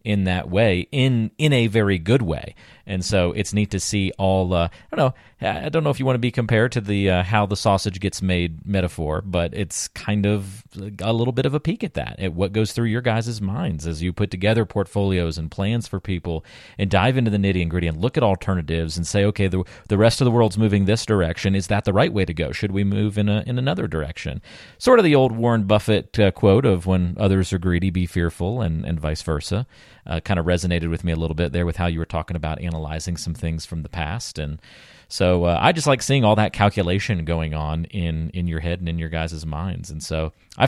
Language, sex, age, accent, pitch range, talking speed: English, male, 40-59, American, 85-110 Hz, 250 wpm